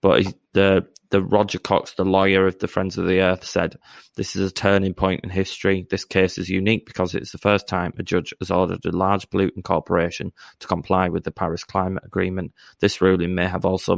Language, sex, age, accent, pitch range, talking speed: English, male, 20-39, British, 95-100 Hz, 215 wpm